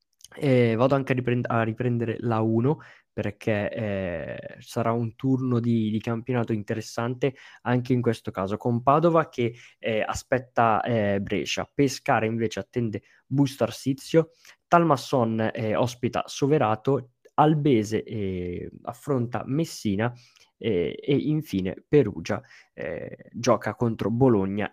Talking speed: 120 wpm